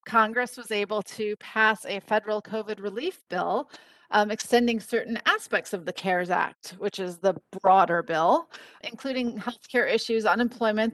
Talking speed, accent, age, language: 150 wpm, American, 30-49, English